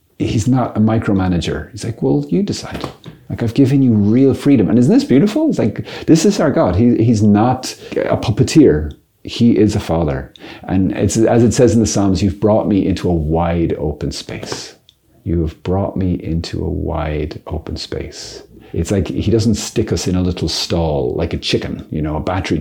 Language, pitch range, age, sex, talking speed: English, 90-115 Hz, 40-59, male, 200 wpm